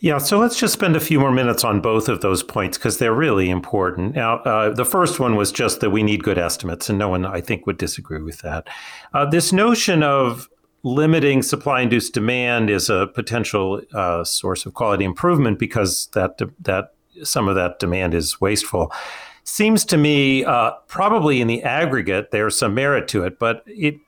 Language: English